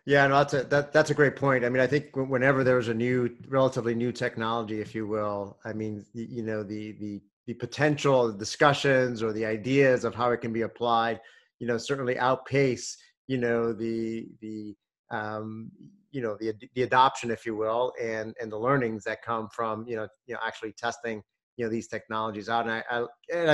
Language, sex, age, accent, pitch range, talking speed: English, male, 30-49, American, 115-130 Hz, 205 wpm